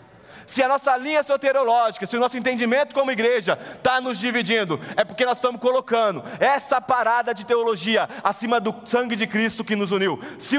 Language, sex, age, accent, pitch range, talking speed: Portuguese, male, 20-39, Brazilian, 200-255 Hz, 180 wpm